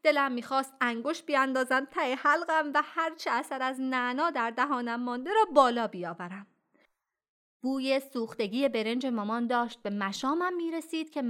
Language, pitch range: Persian, 205-285 Hz